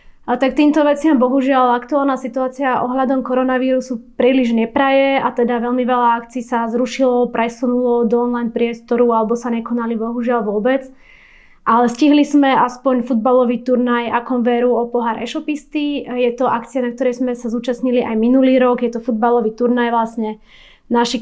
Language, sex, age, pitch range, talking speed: Slovak, female, 20-39, 230-255 Hz, 155 wpm